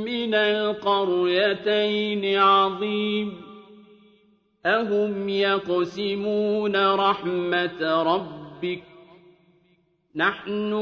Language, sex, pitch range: Arabic, male, 180-210 Hz